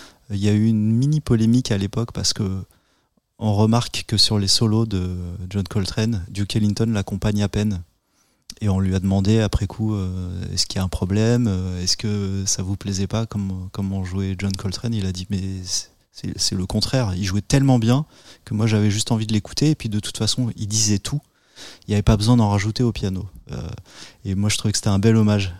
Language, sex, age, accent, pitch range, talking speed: French, male, 30-49, French, 95-110 Hz, 225 wpm